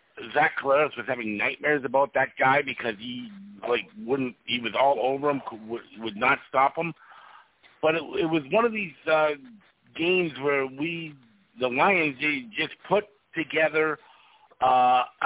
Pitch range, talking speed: 130-165 Hz, 155 wpm